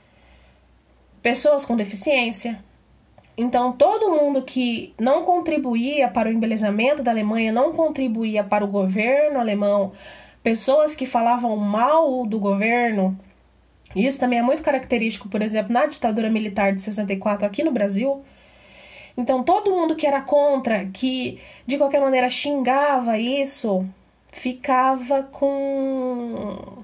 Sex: female